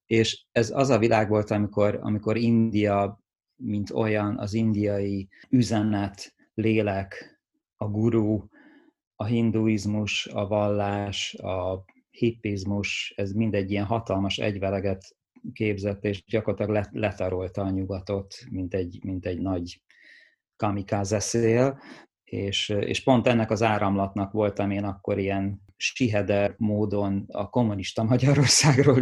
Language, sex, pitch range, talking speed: Hungarian, male, 100-110 Hz, 115 wpm